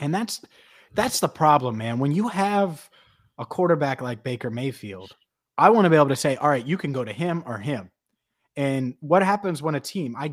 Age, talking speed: 30-49, 215 wpm